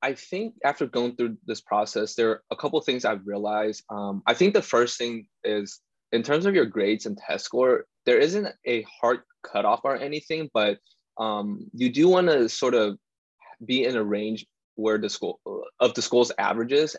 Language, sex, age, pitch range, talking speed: English, male, 20-39, 105-125 Hz, 195 wpm